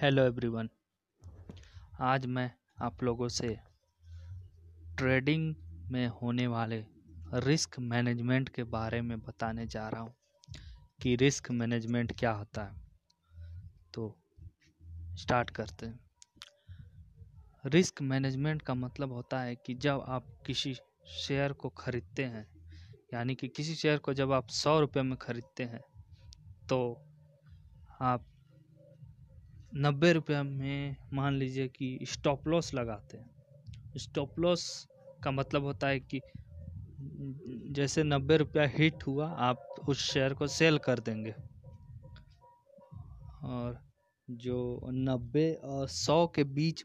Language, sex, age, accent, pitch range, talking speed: Hindi, male, 20-39, native, 115-140 Hz, 120 wpm